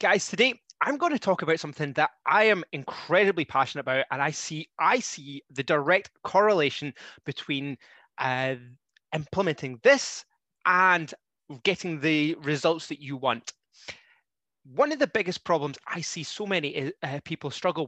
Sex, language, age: male, English, 20-39